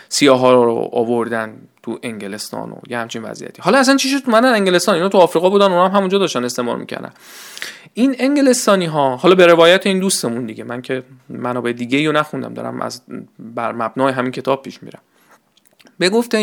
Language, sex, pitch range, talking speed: Persian, male, 145-230 Hz, 175 wpm